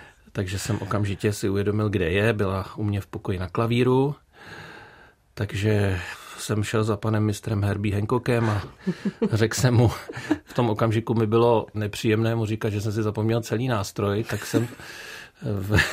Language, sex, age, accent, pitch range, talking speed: Czech, male, 40-59, native, 105-115 Hz, 160 wpm